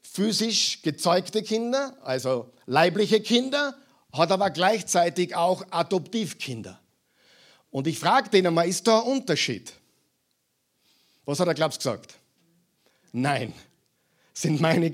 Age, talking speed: 50-69, 115 wpm